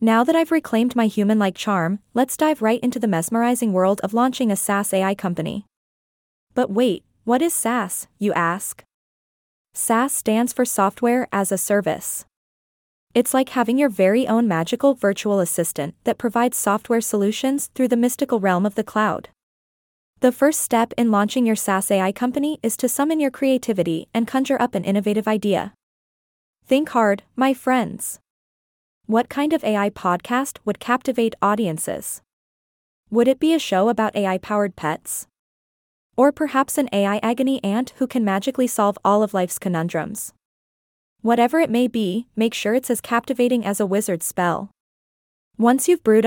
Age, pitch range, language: 20-39, 200-250 Hz, English